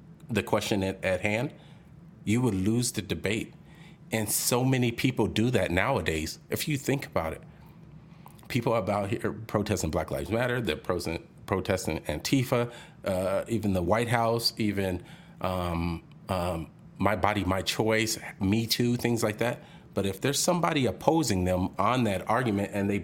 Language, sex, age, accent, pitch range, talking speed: English, male, 40-59, American, 95-130 Hz, 160 wpm